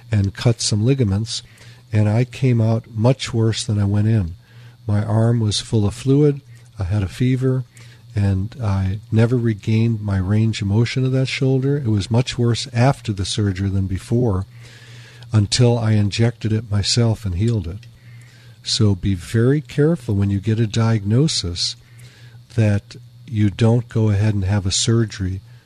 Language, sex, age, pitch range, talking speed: English, male, 50-69, 105-120 Hz, 165 wpm